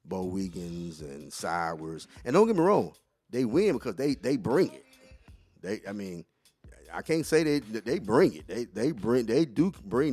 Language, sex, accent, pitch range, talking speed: English, male, American, 85-105 Hz, 190 wpm